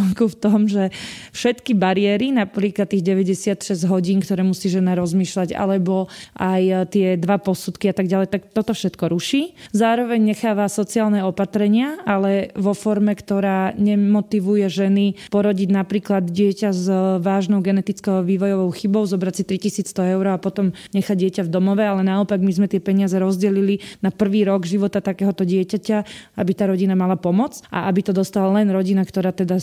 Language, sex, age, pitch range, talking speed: Slovak, female, 20-39, 190-205 Hz, 160 wpm